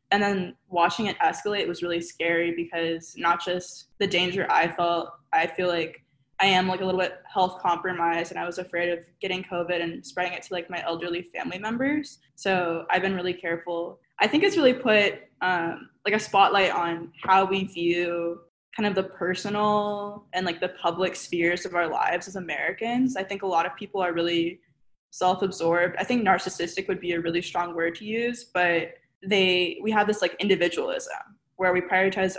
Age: 10-29